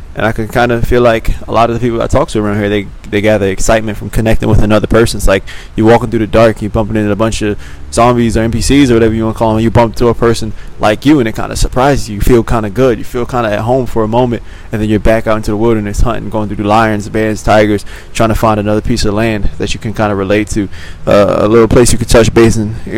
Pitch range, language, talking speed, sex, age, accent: 100-115 Hz, English, 300 wpm, male, 20-39, American